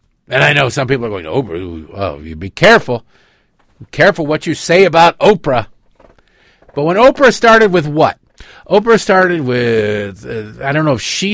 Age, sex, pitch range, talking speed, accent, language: 50-69, male, 100-145 Hz, 175 wpm, American, English